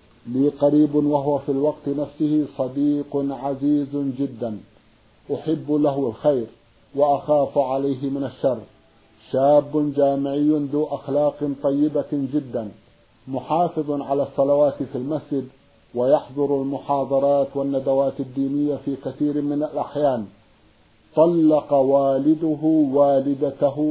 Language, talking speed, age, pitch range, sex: Arabic, 95 wpm, 50-69, 135-150 Hz, male